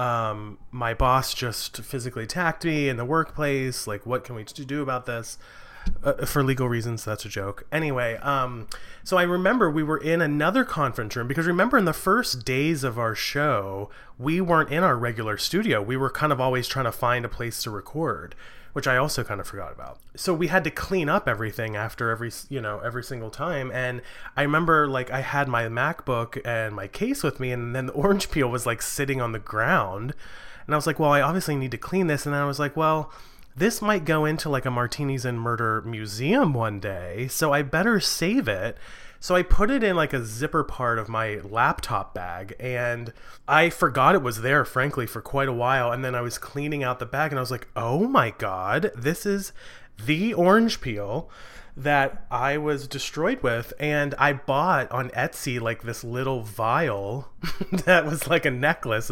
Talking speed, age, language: 205 wpm, 30-49, English